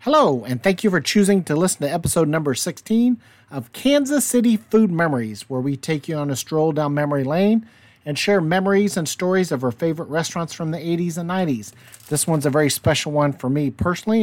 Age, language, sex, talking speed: 40-59, English, male, 210 wpm